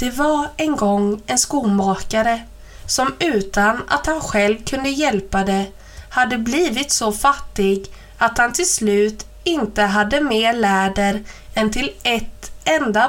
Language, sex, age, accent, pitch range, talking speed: Swedish, female, 20-39, native, 205-260 Hz, 140 wpm